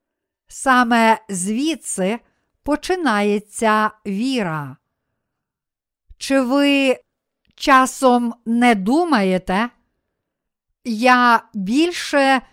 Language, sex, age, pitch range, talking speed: Ukrainian, female, 50-69, 215-275 Hz, 55 wpm